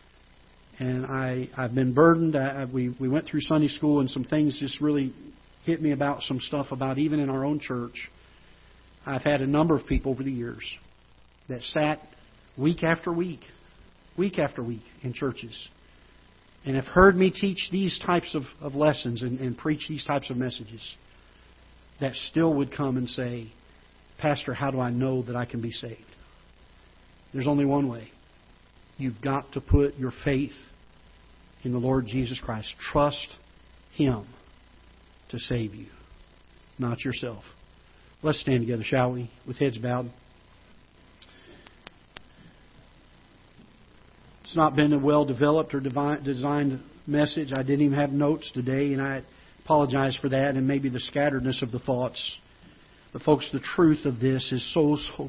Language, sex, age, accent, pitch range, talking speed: English, male, 50-69, American, 120-145 Hz, 155 wpm